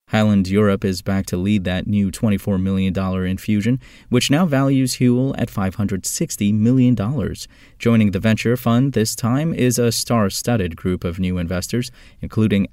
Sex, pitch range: male, 95-120 Hz